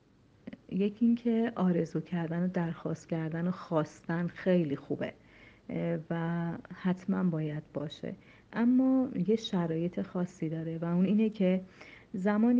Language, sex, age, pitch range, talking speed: Persian, female, 40-59, 160-190 Hz, 120 wpm